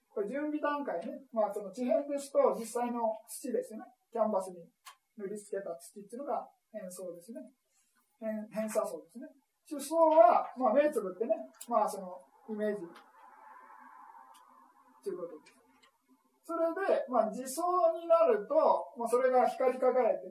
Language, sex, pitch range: Japanese, male, 215-315 Hz